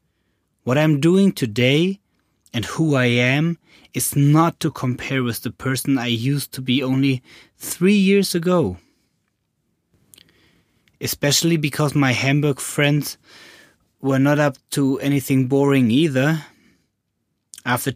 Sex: male